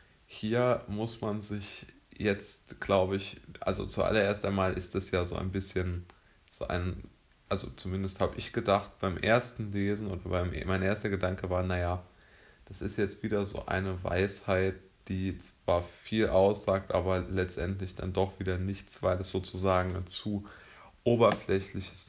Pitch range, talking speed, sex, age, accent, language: 95-105 Hz, 150 wpm, male, 20-39, German, German